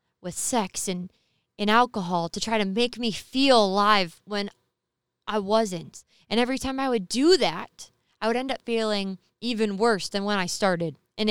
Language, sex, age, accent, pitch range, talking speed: English, female, 20-39, American, 180-225 Hz, 180 wpm